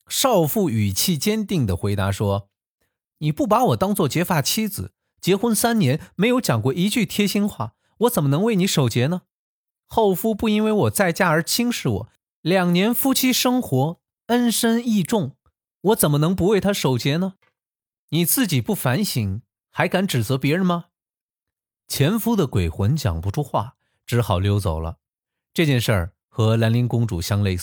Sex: male